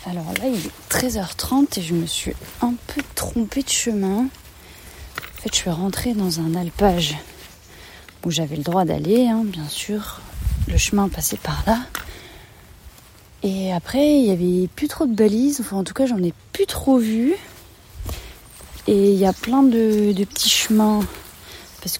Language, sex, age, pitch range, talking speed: French, female, 30-49, 170-210 Hz, 170 wpm